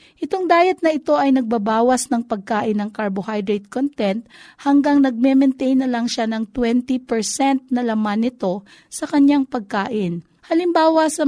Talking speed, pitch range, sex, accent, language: 140 wpm, 225-285 Hz, female, native, Filipino